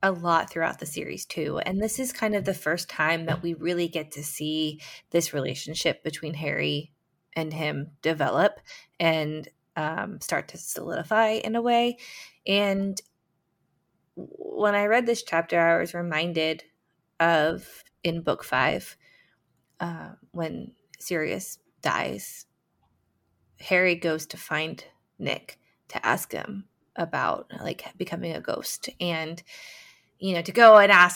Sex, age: female, 20-39